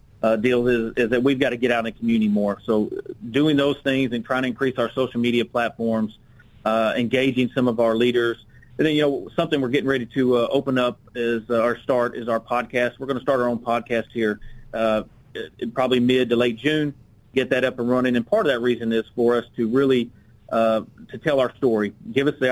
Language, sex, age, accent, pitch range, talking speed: English, male, 40-59, American, 115-130 Hz, 235 wpm